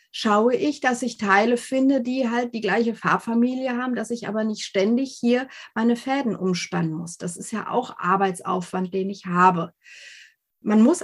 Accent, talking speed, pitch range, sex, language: German, 175 wpm, 190-250 Hz, female, German